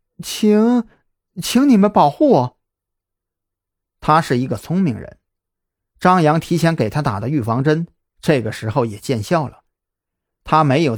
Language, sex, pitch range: Chinese, male, 100-160 Hz